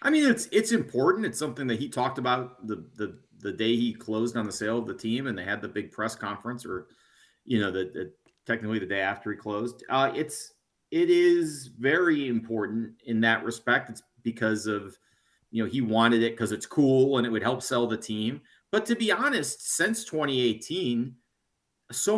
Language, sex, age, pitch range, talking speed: English, male, 40-59, 110-140 Hz, 205 wpm